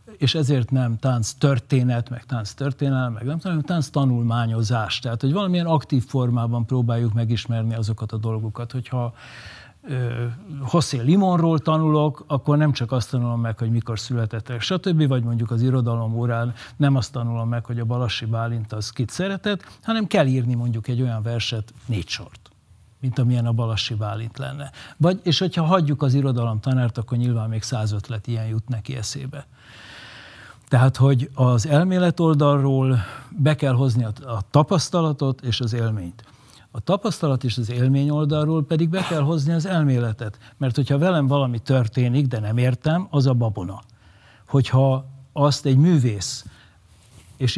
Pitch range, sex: 115-145 Hz, male